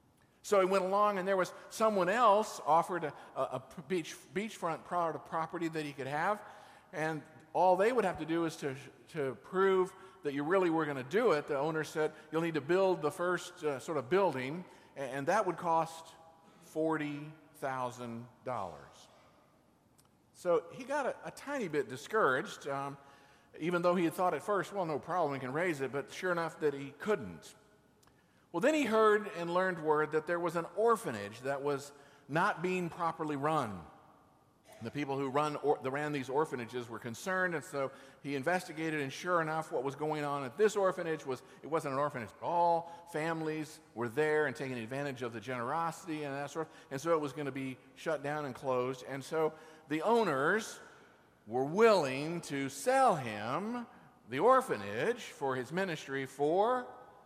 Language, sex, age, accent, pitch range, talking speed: English, male, 50-69, American, 140-180 Hz, 185 wpm